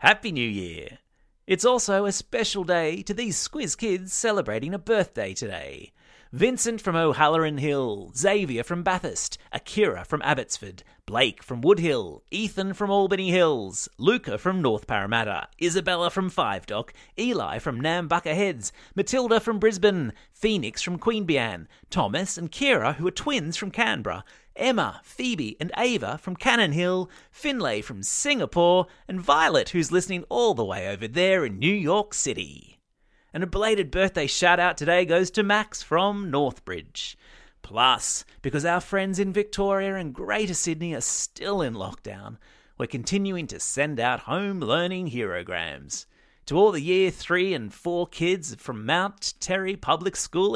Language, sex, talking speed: English, male, 150 wpm